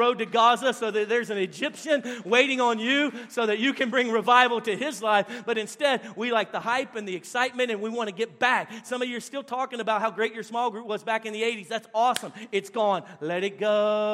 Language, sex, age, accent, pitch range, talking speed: English, male, 40-59, American, 190-245 Hz, 250 wpm